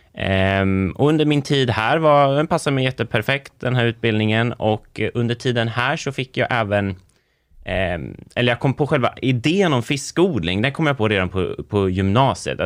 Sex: male